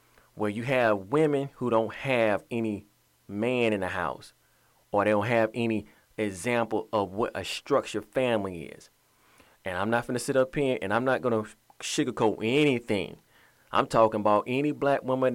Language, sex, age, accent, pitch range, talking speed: English, male, 30-49, American, 110-125 Hz, 175 wpm